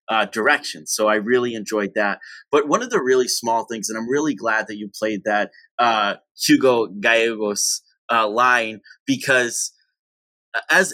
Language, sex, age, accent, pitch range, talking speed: English, male, 30-49, American, 105-135 Hz, 160 wpm